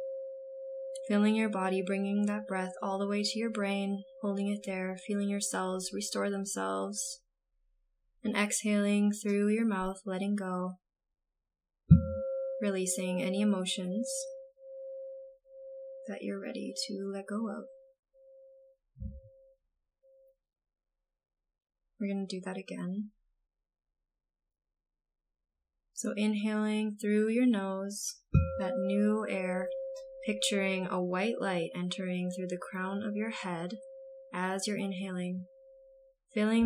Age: 20-39